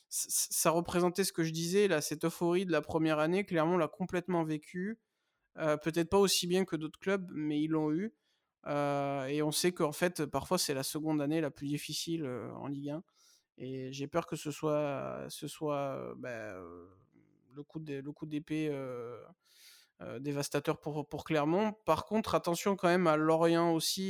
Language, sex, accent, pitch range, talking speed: French, male, French, 150-185 Hz, 195 wpm